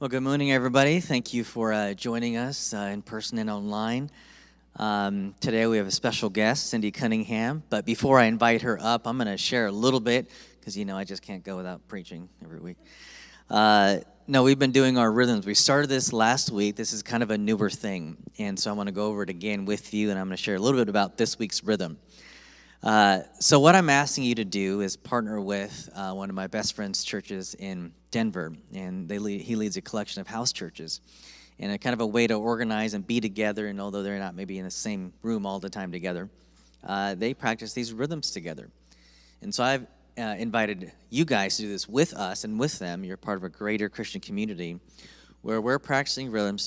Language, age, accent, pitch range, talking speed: English, 30-49, American, 100-115 Hz, 225 wpm